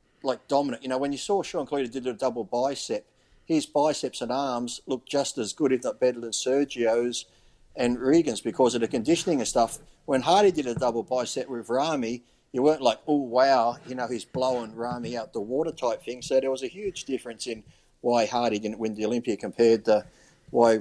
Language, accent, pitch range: English, Australian, 120-145 Hz